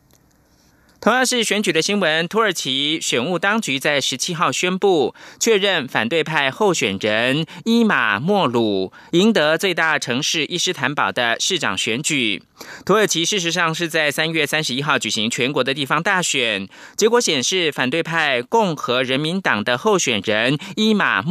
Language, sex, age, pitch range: German, male, 30-49, 140-195 Hz